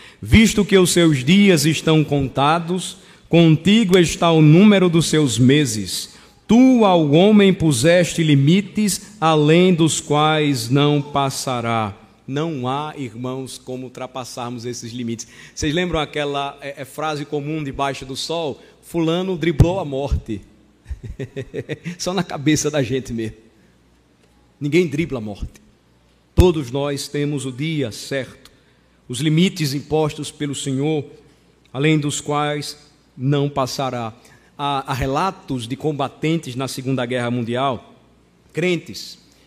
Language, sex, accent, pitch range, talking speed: Portuguese, male, Brazilian, 135-175 Hz, 120 wpm